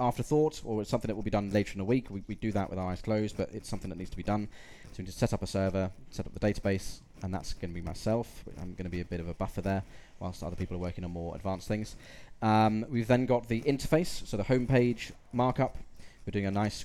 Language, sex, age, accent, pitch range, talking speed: English, male, 20-39, British, 95-120 Hz, 275 wpm